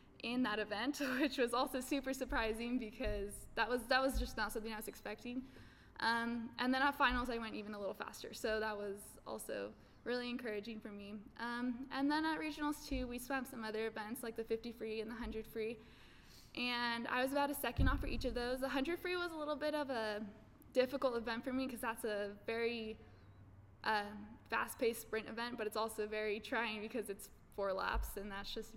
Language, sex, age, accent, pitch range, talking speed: English, female, 10-29, American, 215-250 Hz, 210 wpm